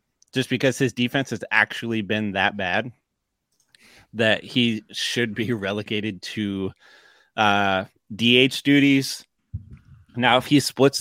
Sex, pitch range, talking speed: male, 105-130 Hz, 120 wpm